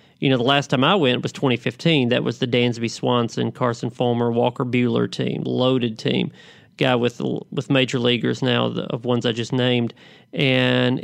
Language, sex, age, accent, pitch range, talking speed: English, male, 40-59, American, 120-145 Hz, 185 wpm